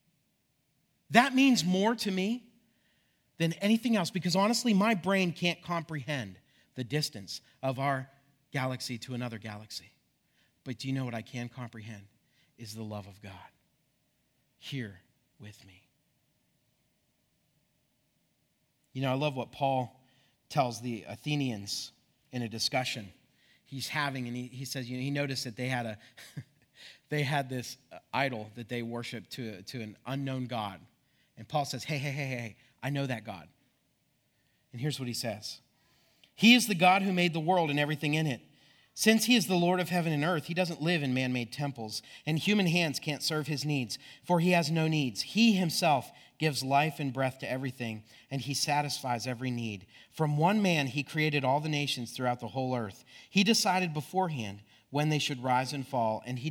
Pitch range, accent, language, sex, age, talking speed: 120-155 Hz, American, English, male, 30-49, 175 wpm